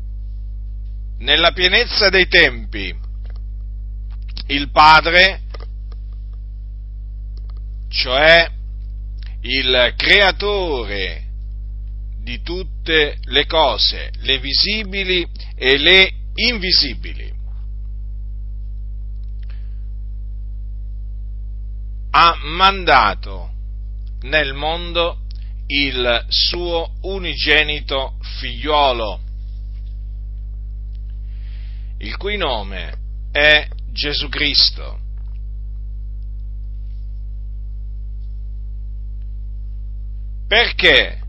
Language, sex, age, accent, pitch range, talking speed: Italian, male, 40-59, native, 100-140 Hz, 50 wpm